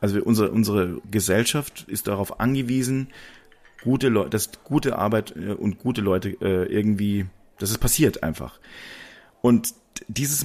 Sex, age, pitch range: male, 40-59, 100-125 Hz